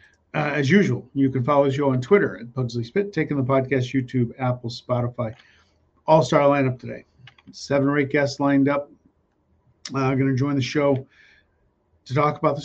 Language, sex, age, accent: English, male, 50-69, American